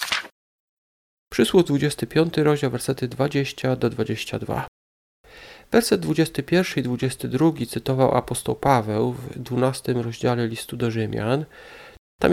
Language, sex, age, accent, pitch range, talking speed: Polish, male, 40-59, native, 120-155 Hz, 100 wpm